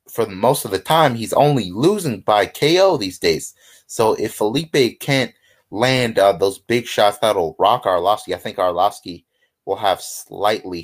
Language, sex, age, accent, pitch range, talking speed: English, male, 30-49, American, 100-135 Hz, 165 wpm